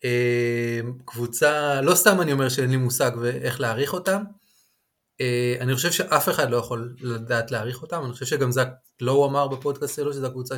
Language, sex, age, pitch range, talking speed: Hebrew, male, 20-39, 120-145 Hz, 185 wpm